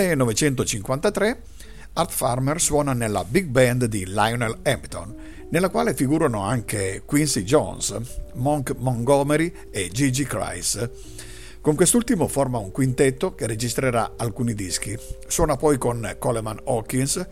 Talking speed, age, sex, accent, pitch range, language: 120 wpm, 50-69, male, native, 110-150 Hz, Italian